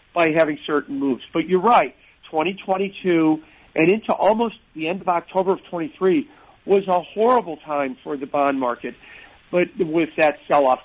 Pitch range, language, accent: 155-200 Hz, English, American